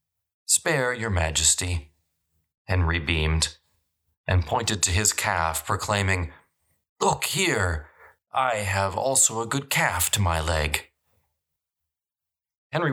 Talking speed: 105 wpm